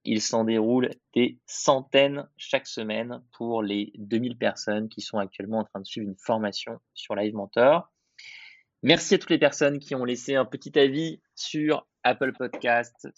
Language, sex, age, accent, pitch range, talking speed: French, male, 20-39, French, 105-135 Hz, 170 wpm